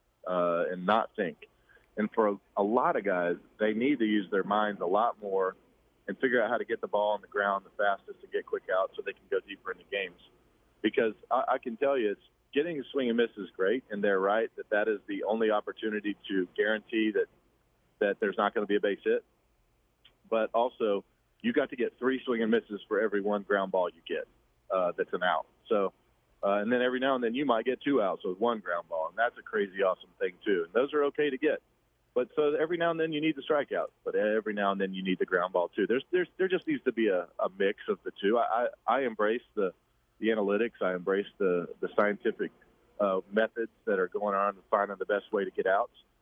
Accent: American